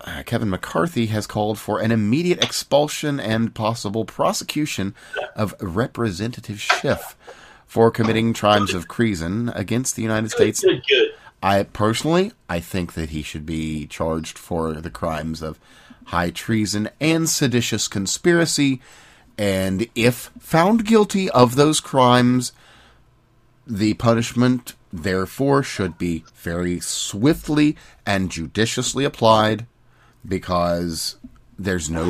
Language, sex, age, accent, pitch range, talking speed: English, male, 40-59, American, 95-120 Hz, 115 wpm